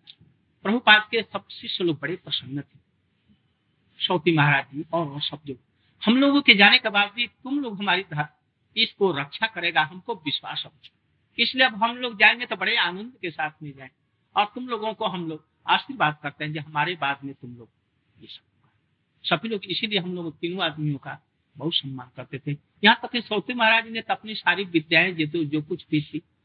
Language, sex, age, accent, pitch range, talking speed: Hindi, male, 60-79, native, 155-230 Hz, 190 wpm